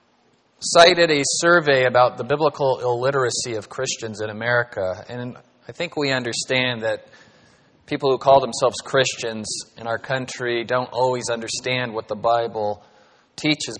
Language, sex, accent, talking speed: English, male, American, 140 wpm